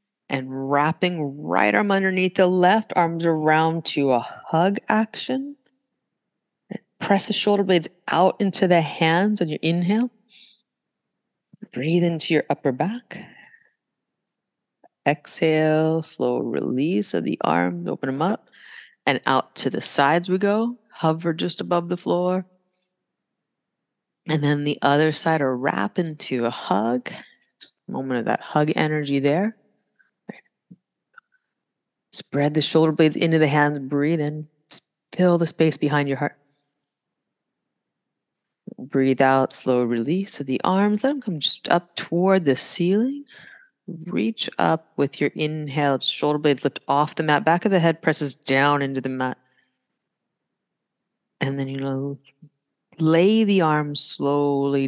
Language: English